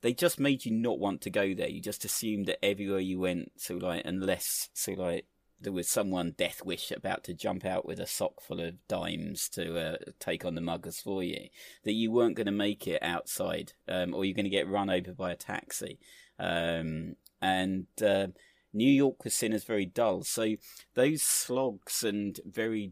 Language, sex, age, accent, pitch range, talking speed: English, male, 30-49, British, 90-110 Hz, 205 wpm